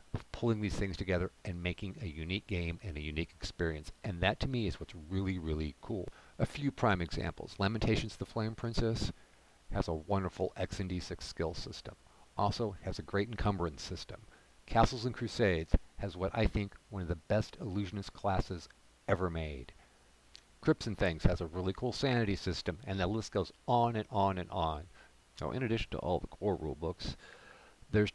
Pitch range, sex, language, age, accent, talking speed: 80-105 Hz, male, English, 50-69, American, 190 wpm